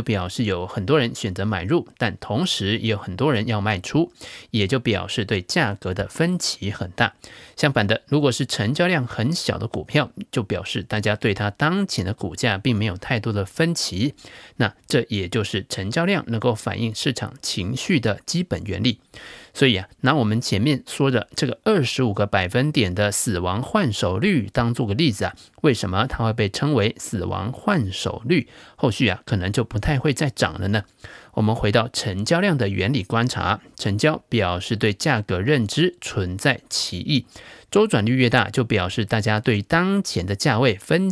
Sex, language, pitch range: male, Chinese, 105-145 Hz